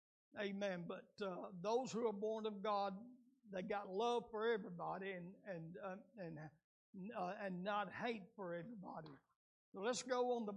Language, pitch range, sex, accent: English, 185-220 Hz, male, American